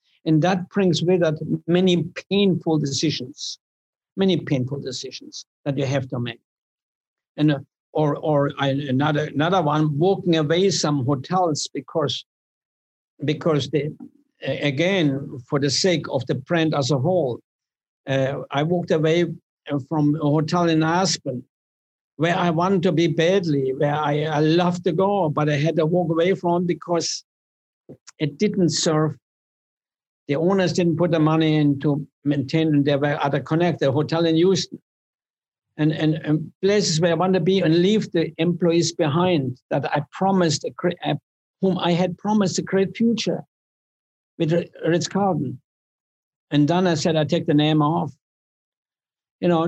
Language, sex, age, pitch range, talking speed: English, male, 60-79, 145-180 Hz, 155 wpm